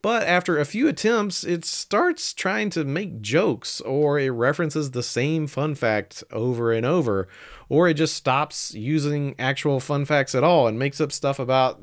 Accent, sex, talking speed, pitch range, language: American, male, 185 wpm, 130-175 Hz, English